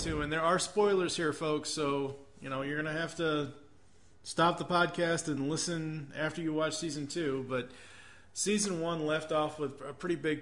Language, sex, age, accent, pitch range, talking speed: English, male, 20-39, American, 115-150 Hz, 195 wpm